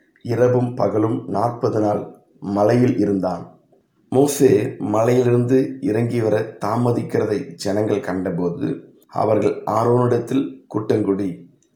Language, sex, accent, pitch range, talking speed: Tamil, male, native, 105-130 Hz, 75 wpm